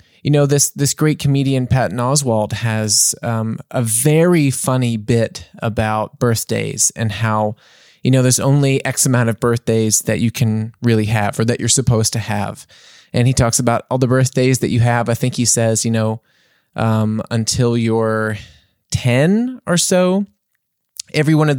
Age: 20-39